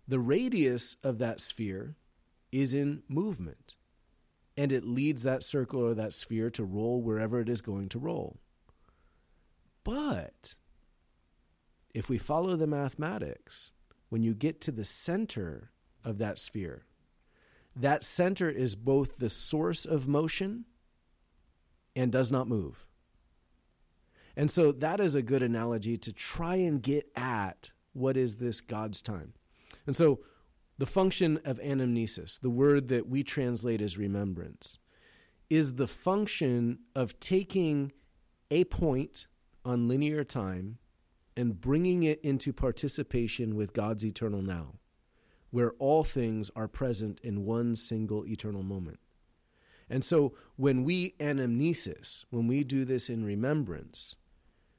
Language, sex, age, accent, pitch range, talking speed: English, male, 40-59, American, 100-145 Hz, 135 wpm